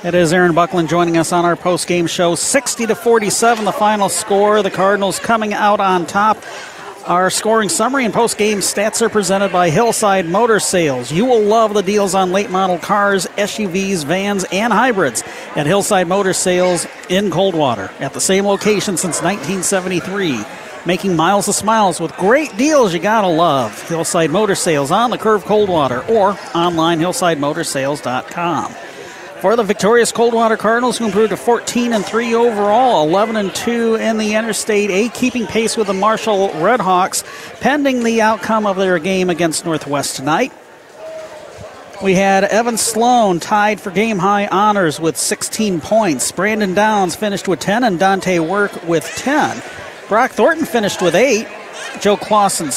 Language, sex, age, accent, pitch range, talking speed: English, male, 50-69, American, 180-220 Hz, 155 wpm